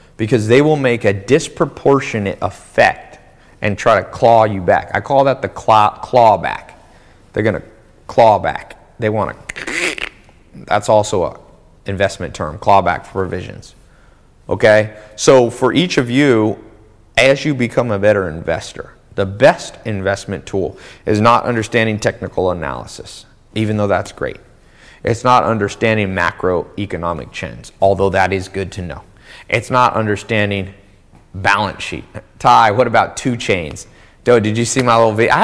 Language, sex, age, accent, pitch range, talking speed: English, male, 30-49, American, 95-120 Hz, 150 wpm